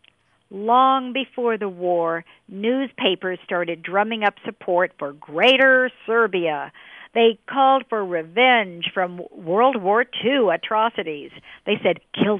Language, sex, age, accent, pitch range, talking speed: English, female, 50-69, American, 175-235 Hz, 115 wpm